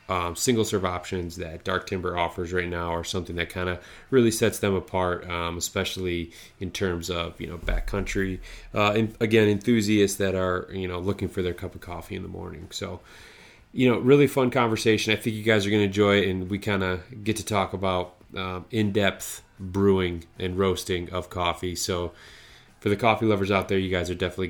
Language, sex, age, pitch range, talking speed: English, male, 30-49, 90-105 Hz, 205 wpm